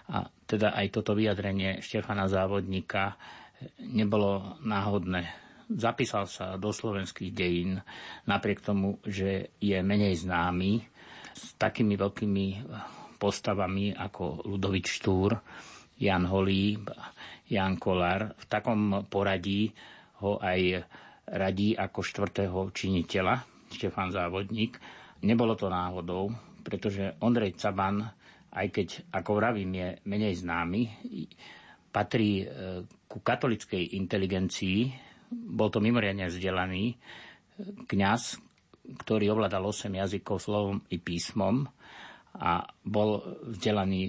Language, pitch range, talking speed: Slovak, 95-110 Hz, 100 wpm